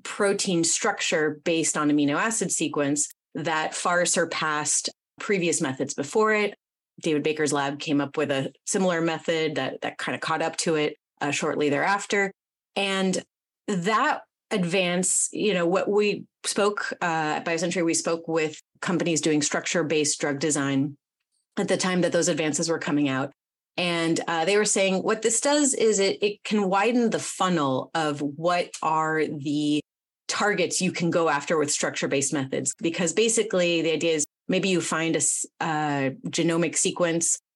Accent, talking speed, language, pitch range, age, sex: American, 165 wpm, English, 155-190 Hz, 30-49, female